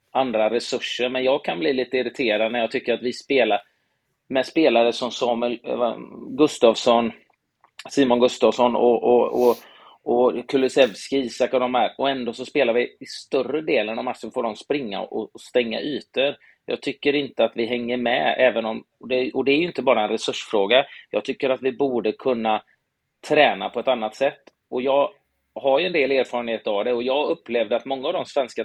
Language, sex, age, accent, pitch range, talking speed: Swedish, male, 30-49, native, 115-135 Hz, 195 wpm